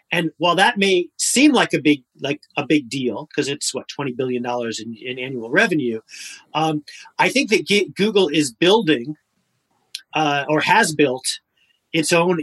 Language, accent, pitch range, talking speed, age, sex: English, American, 130-175 Hz, 170 wpm, 30-49, male